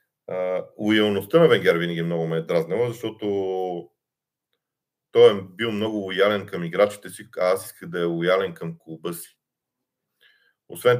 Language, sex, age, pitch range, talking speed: Bulgarian, male, 40-59, 85-105 Hz, 145 wpm